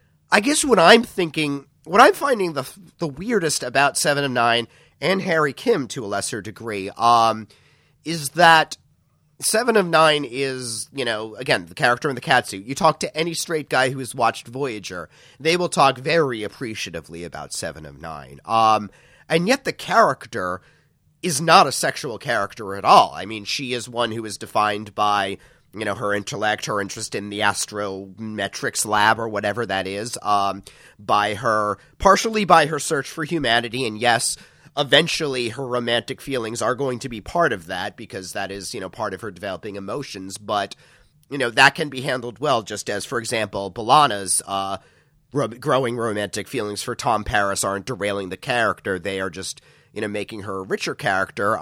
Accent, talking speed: American, 185 wpm